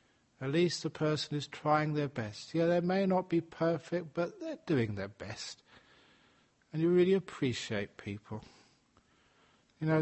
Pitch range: 120-160 Hz